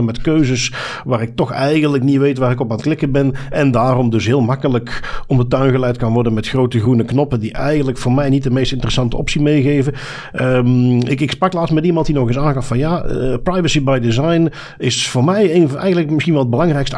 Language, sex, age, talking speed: Dutch, male, 50-69, 225 wpm